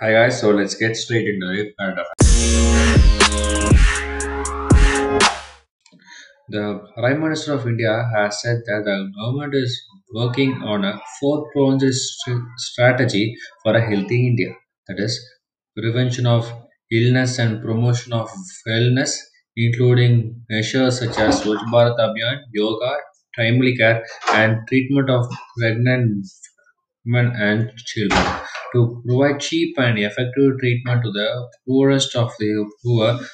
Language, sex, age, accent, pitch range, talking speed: English, male, 20-39, Indian, 110-130 Hz, 115 wpm